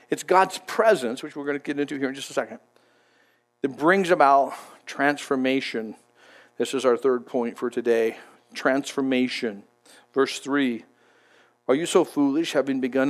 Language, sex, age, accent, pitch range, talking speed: English, male, 50-69, American, 125-175 Hz, 155 wpm